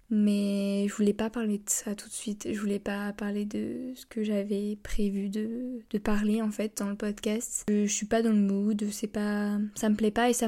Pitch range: 205-225 Hz